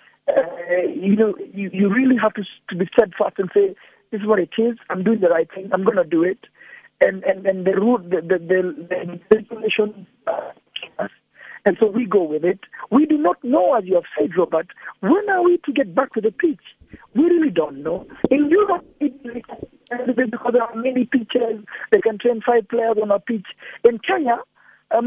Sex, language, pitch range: male, English, 195-275 Hz